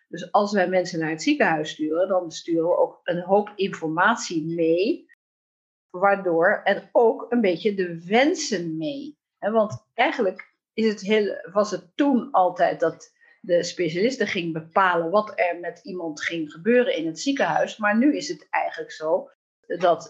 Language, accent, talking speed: Dutch, Dutch, 165 wpm